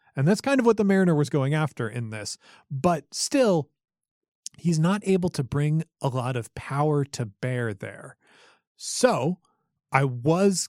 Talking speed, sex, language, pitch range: 165 wpm, male, English, 125-175 Hz